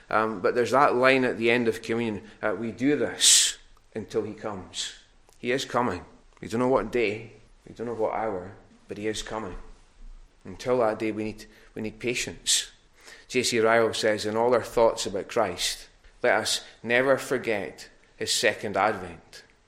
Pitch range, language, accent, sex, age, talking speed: 100-120 Hz, English, British, male, 30-49, 180 wpm